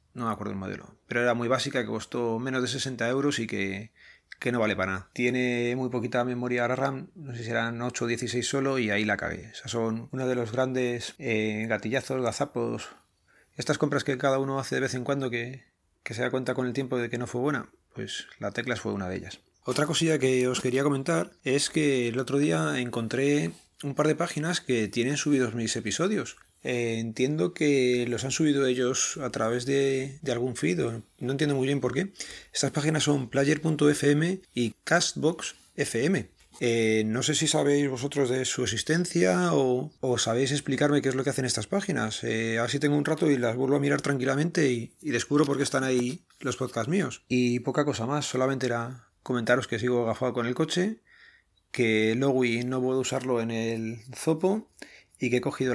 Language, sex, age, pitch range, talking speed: Spanish, male, 30-49, 115-140 Hz, 210 wpm